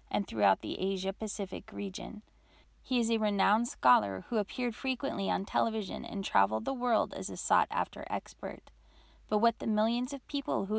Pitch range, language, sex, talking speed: 185-225 Hz, English, female, 165 wpm